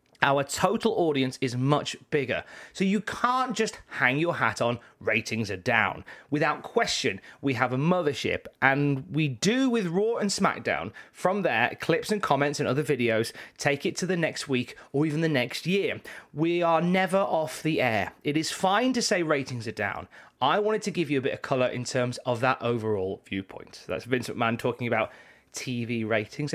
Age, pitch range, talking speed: 30-49, 125-180 Hz, 195 wpm